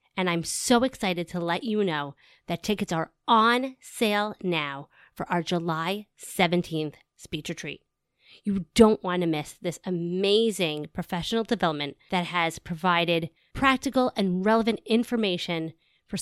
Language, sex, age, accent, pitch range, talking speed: English, female, 30-49, American, 165-210 Hz, 135 wpm